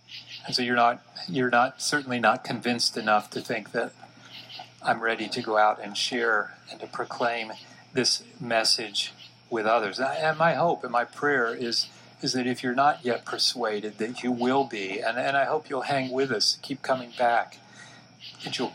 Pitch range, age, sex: 110-130 Hz, 40-59, male